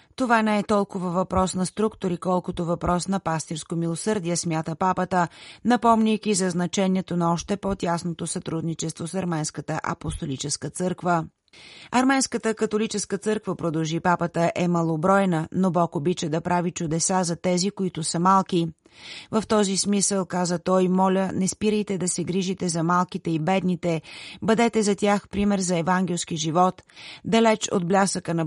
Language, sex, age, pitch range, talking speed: Bulgarian, female, 30-49, 170-195 Hz, 145 wpm